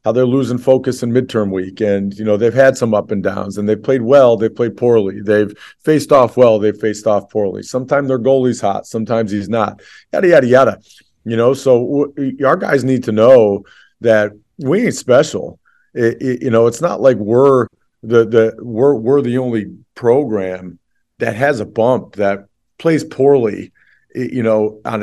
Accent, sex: American, male